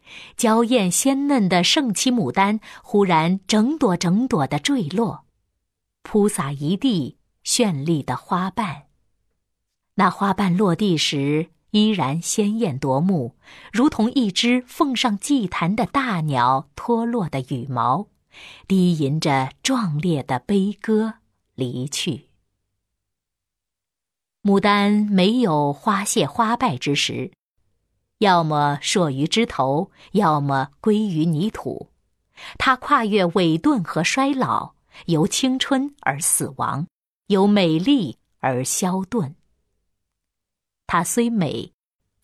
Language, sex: Chinese, female